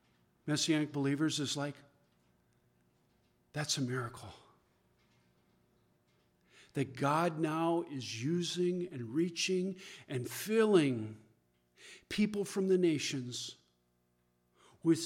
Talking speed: 85 wpm